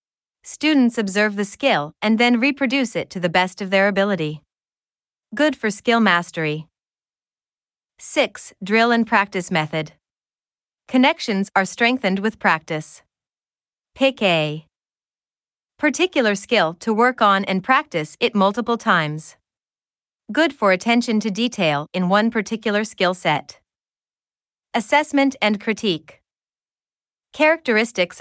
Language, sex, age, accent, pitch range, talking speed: English, female, 30-49, American, 180-235 Hz, 115 wpm